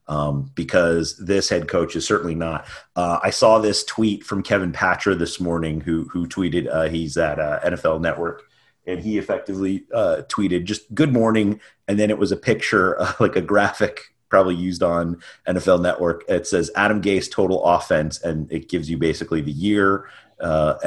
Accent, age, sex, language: American, 30-49, male, English